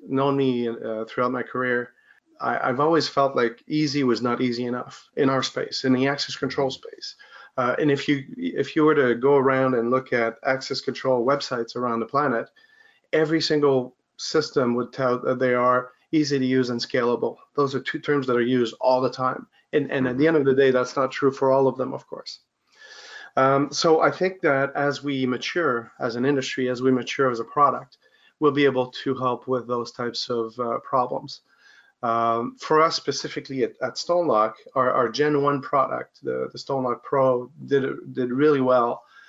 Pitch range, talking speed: 120-140 Hz, 205 wpm